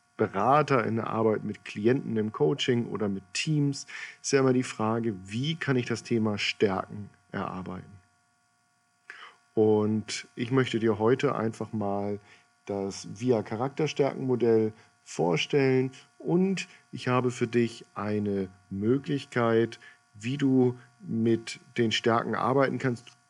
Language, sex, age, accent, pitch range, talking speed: German, male, 50-69, German, 105-130 Hz, 125 wpm